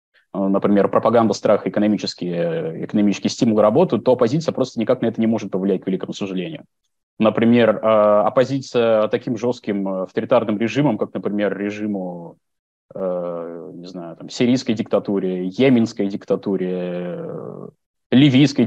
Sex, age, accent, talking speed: male, 20-39, native, 115 wpm